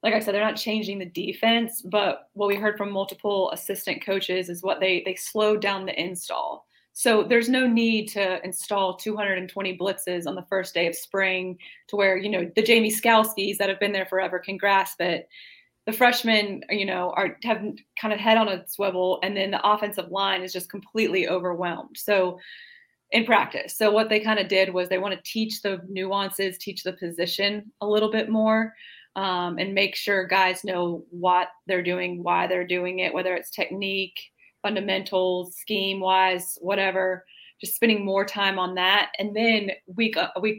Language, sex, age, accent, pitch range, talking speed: English, female, 20-39, American, 185-210 Hz, 190 wpm